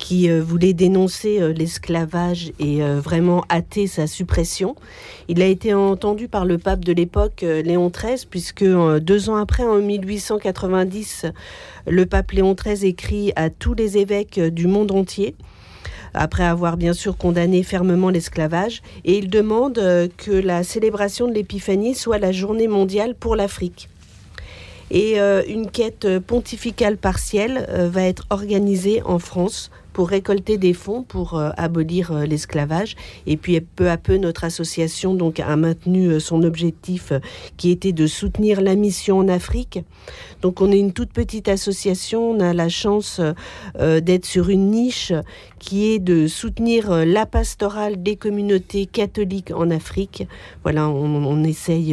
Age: 50-69